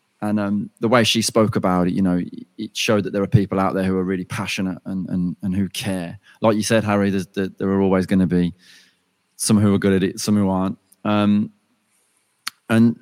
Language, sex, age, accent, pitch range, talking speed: English, male, 30-49, British, 100-110 Hz, 230 wpm